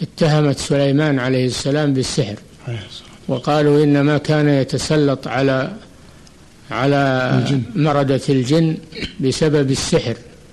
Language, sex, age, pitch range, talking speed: Arabic, male, 60-79, 135-155 Hz, 85 wpm